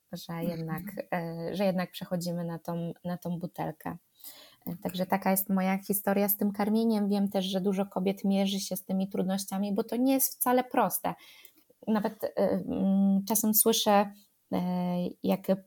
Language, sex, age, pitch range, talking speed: Polish, female, 20-39, 195-225 Hz, 140 wpm